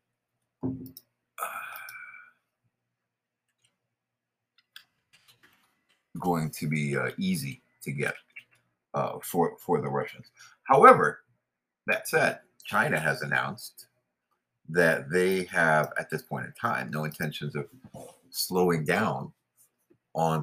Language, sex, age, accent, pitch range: English, male, 50-69, American, 70-90 Hz